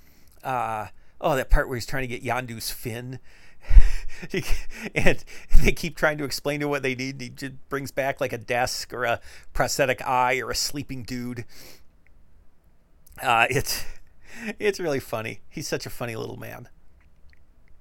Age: 40-59